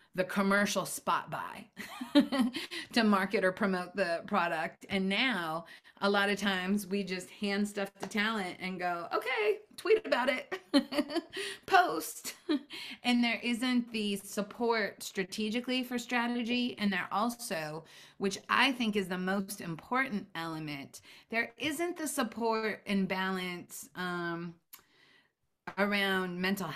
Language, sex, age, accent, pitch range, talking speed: English, female, 30-49, American, 185-230 Hz, 130 wpm